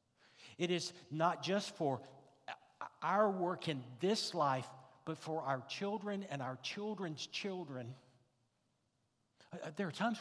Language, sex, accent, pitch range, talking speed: English, male, American, 120-155 Hz, 125 wpm